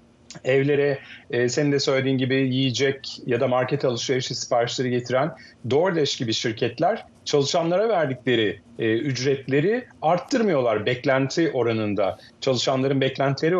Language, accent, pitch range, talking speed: Turkish, native, 120-160 Hz, 110 wpm